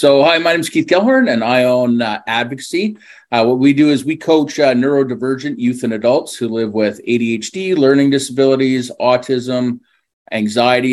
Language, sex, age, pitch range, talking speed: English, male, 40-59, 110-130 Hz, 175 wpm